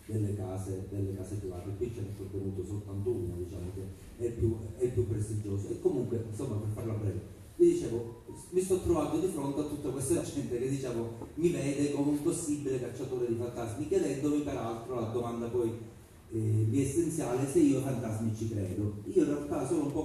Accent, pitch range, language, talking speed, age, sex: native, 105-135 Hz, Italian, 190 wpm, 30-49, male